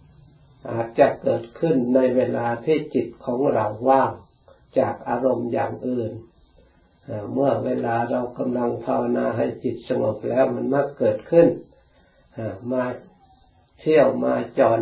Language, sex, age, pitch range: Thai, male, 60-79, 110-130 Hz